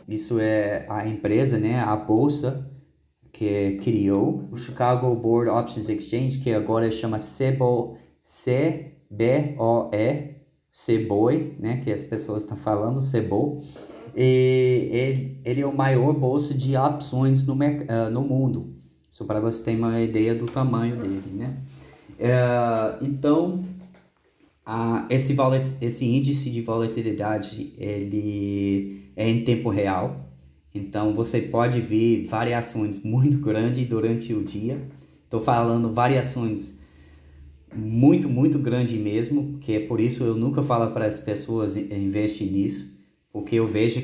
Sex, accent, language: male, Brazilian, Portuguese